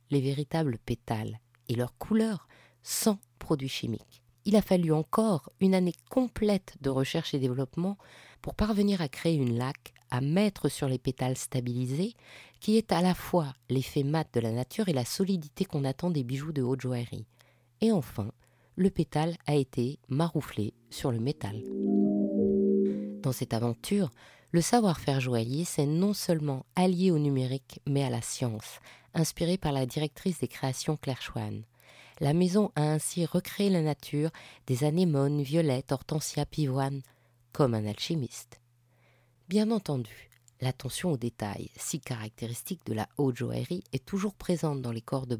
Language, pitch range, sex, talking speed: French, 125-170 Hz, female, 155 wpm